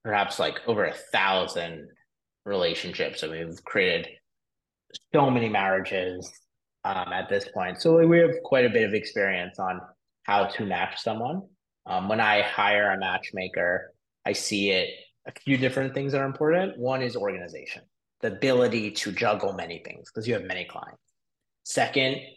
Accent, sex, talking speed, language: American, male, 160 wpm, English